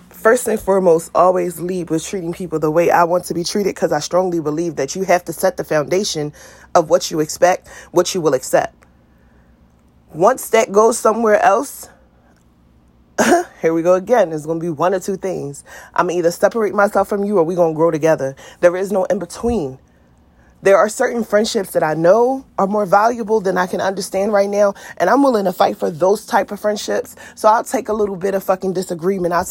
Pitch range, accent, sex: 155-200 Hz, American, female